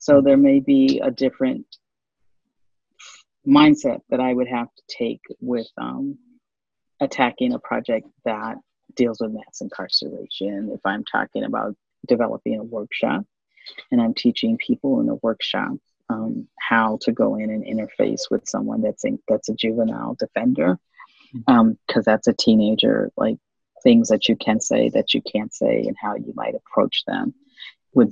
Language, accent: English, American